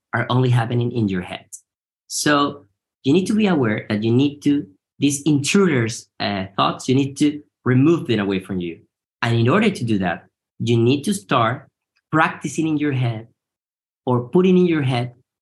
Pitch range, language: 115-160 Hz, English